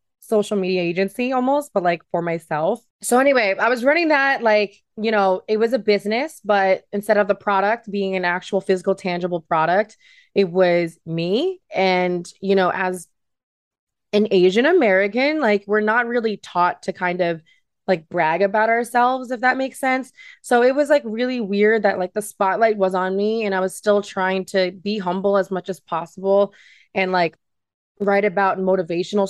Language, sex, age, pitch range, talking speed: English, female, 20-39, 175-210 Hz, 180 wpm